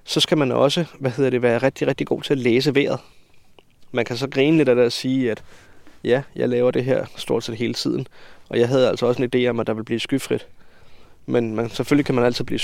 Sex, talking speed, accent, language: male, 255 wpm, native, Danish